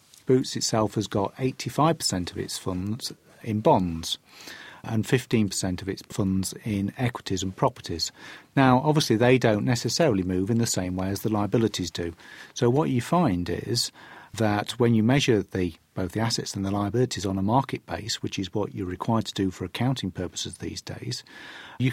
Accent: British